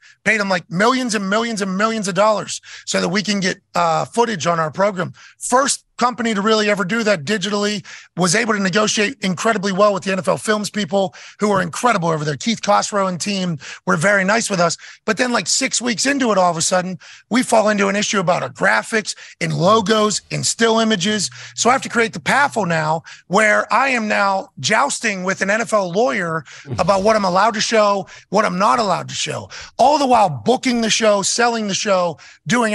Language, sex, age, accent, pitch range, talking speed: English, male, 30-49, American, 180-215 Hz, 215 wpm